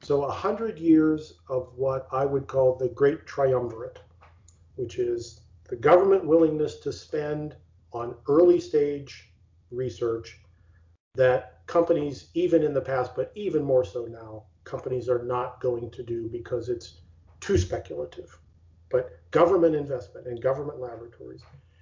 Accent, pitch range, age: American, 120-155 Hz, 40-59